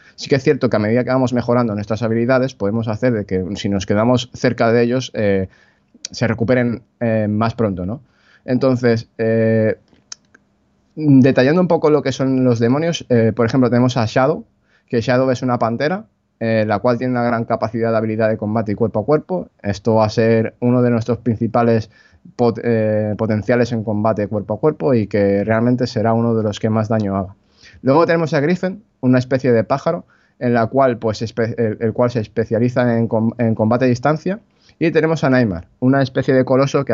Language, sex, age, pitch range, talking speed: Spanish, male, 20-39, 110-130 Hz, 200 wpm